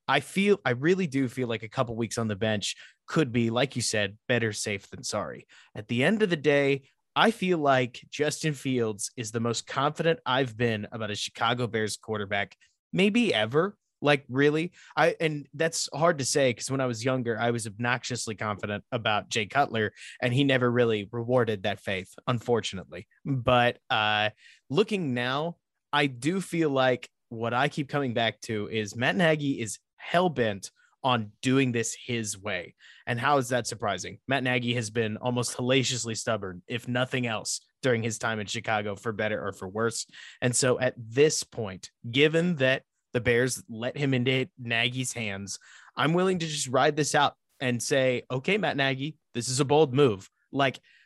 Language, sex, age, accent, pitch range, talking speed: English, male, 20-39, American, 115-140 Hz, 180 wpm